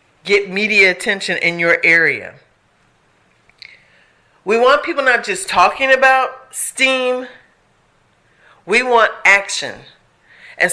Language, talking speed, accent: English, 100 wpm, American